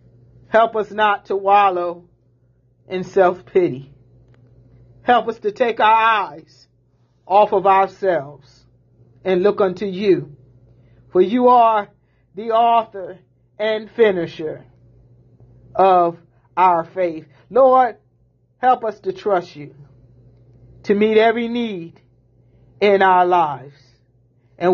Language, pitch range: English, 125-205 Hz